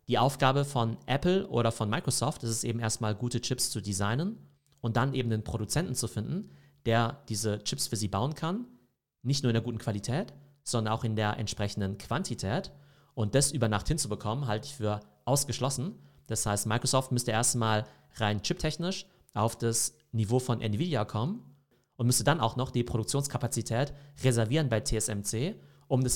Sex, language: male, German